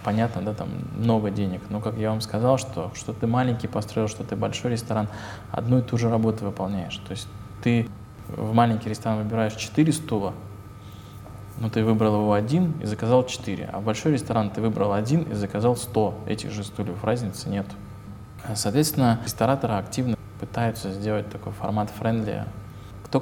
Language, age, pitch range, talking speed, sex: Russian, 20-39, 100-120 Hz, 170 wpm, male